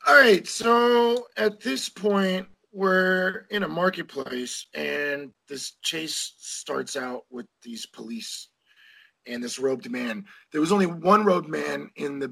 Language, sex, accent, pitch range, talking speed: English, male, American, 145-220 Hz, 140 wpm